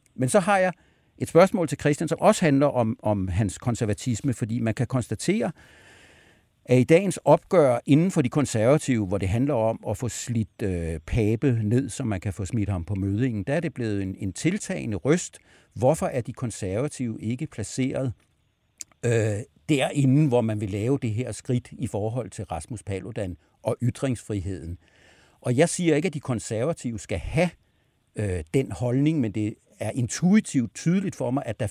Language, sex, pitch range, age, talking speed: Danish, male, 105-145 Hz, 60-79, 180 wpm